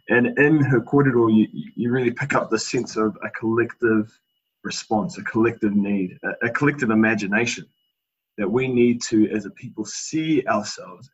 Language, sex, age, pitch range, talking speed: English, male, 20-39, 105-120 Hz, 160 wpm